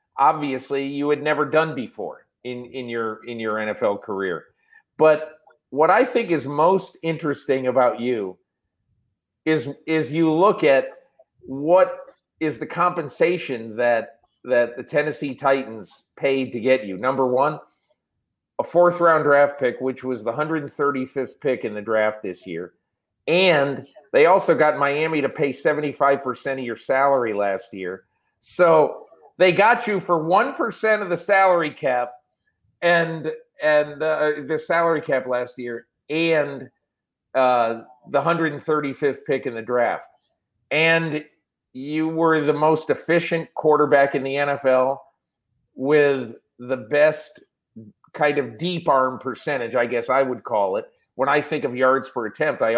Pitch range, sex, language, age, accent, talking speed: 125-160 Hz, male, English, 40-59, American, 145 wpm